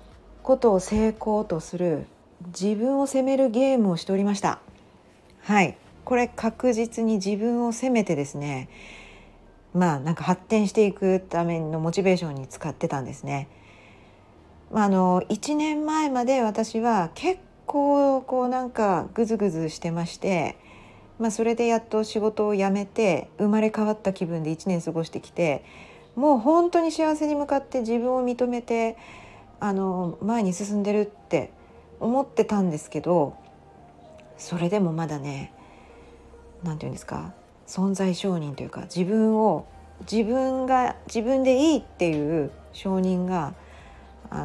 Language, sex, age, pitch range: Japanese, female, 40-59, 165-245 Hz